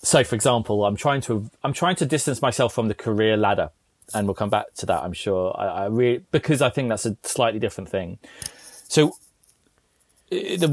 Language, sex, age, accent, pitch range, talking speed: English, male, 30-49, British, 100-125 Hz, 200 wpm